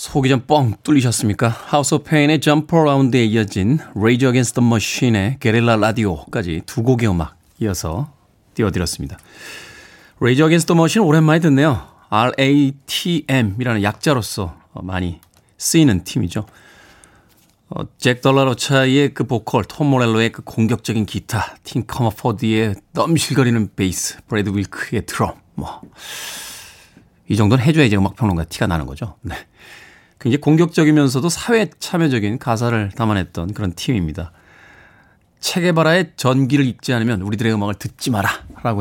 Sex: male